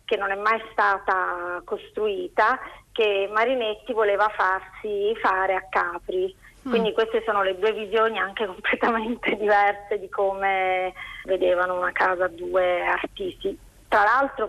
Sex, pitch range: female, 190-225 Hz